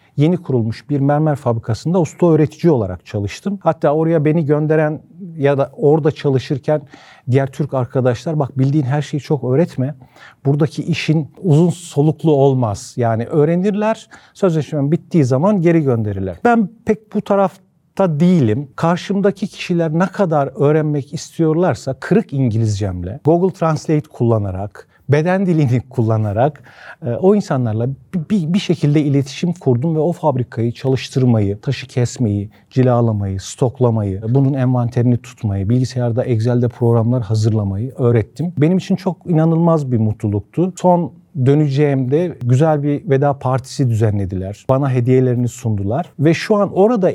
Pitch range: 125-165 Hz